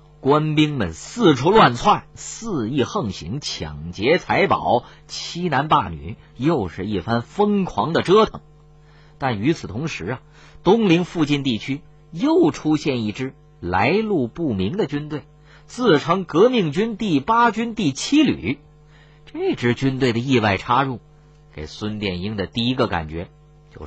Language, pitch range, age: Chinese, 105-150 Hz, 50-69